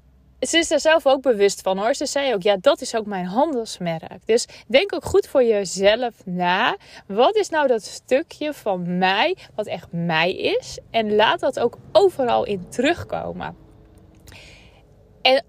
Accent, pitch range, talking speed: Dutch, 195-285 Hz, 165 wpm